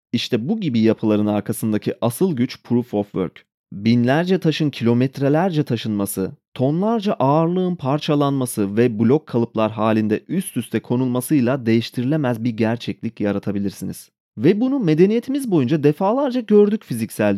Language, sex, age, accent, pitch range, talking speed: Turkish, male, 30-49, native, 115-165 Hz, 120 wpm